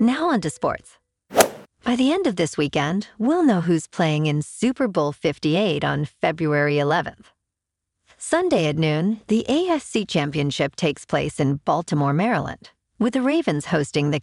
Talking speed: 155 wpm